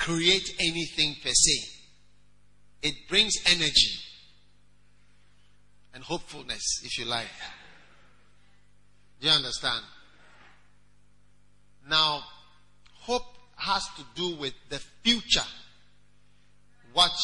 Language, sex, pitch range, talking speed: English, male, 125-175 Hz, 85 wpm